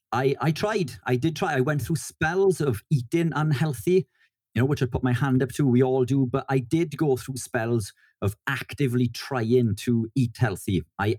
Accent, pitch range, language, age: British, 105-135 Hz, English, 40-59